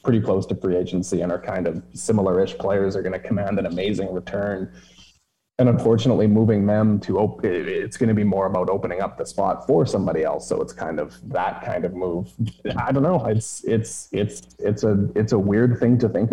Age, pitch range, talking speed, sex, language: 20-39, 95-115 Hz, 215 wpm, male, English